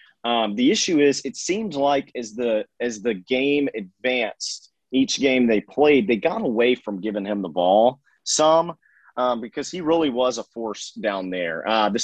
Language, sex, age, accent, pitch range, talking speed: English, male, 30-49, American, 110-140 Hz, 185 wpm